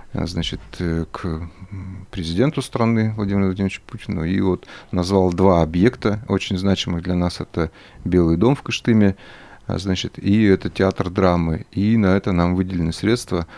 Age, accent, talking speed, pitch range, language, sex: 30-49, native, 140 wpm, 90-100 Hz, Russian, male